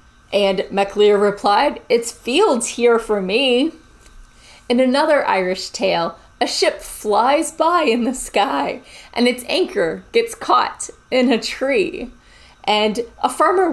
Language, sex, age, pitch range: English, female, 30-49, 215-295 Hz